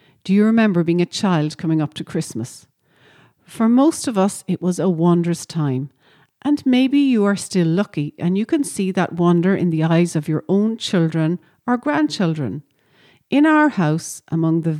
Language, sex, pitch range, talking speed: English, female, 160-235 Hz, 185 wpm